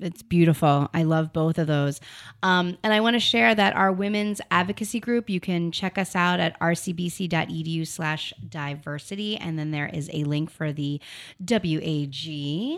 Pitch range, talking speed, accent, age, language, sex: 165-200 Hz, 170 wpm, American, 30-49, English, female